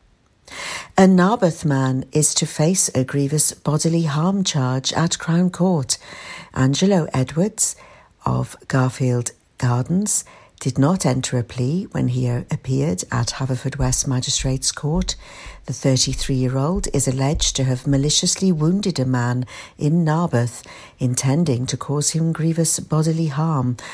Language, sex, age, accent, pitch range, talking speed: English, female, 60-79, British, 130-175 Hz, 130 wpm